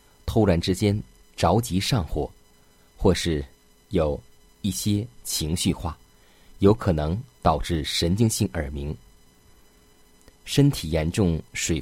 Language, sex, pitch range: Chinese, male, 80-95 Hz